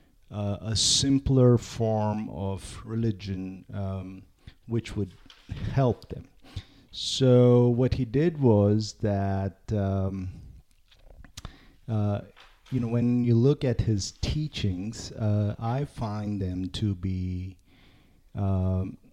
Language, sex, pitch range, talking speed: English, male, 95-115 Hz, 105 wpm